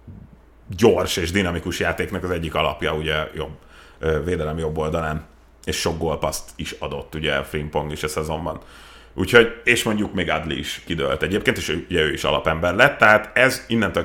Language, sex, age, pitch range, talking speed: Hungarian, male, 30-49, 80-100 Hz, 160 wpm